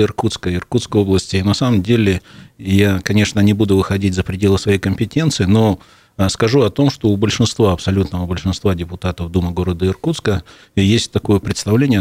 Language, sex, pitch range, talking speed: Russian, male, 95-115 Hz, 160 wpm